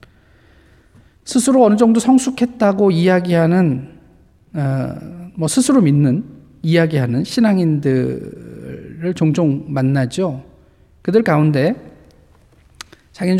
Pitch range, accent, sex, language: 130-175 Hz, native, male, Korean